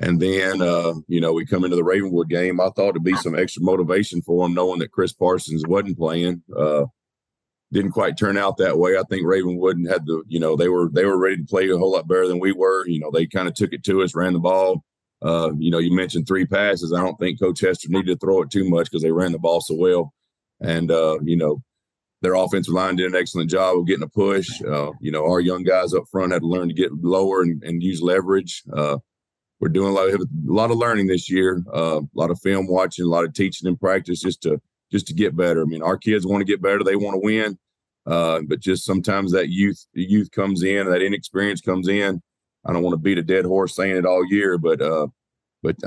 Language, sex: English, male